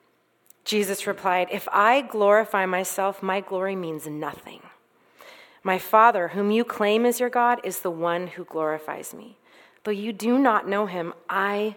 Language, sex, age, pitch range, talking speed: English, female, 30-49, 175-230 Hz, 160 wpm